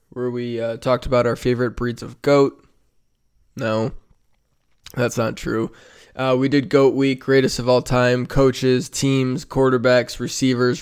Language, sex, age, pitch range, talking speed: English, male, 20-39, 120-135 Hz, 150 wpm